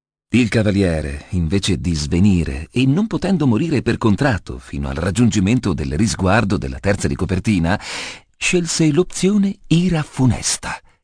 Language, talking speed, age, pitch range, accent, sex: Italian, 125 wpm, 40-59, 90-140 Hz, native, male